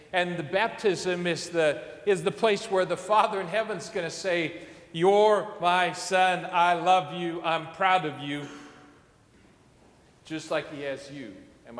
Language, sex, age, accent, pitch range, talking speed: English, male, 40-59, American, 140-185 Hz, 165 wpm